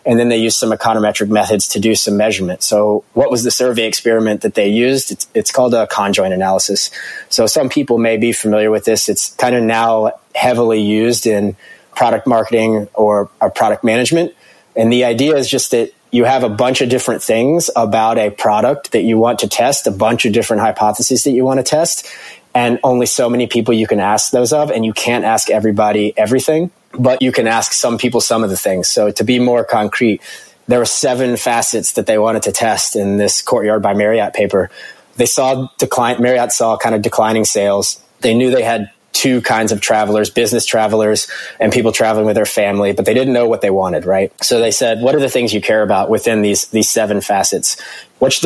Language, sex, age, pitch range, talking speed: English, male, 20-39, 105-125 Hz, 215 wpm